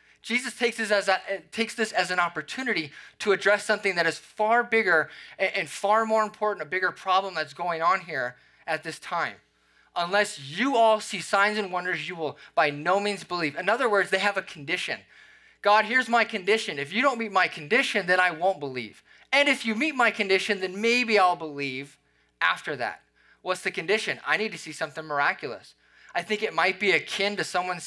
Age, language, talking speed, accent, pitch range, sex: 20-39, English, 200 wpm, American, 155-210 Hz, male